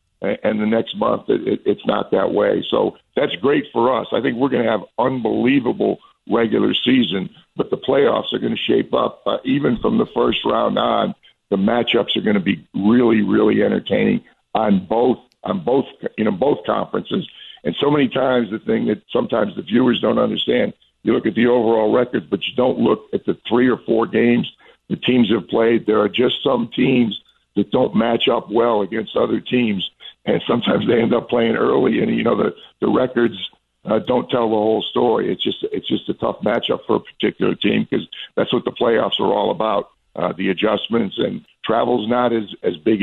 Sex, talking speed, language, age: male, 200 wpm, English, 50-69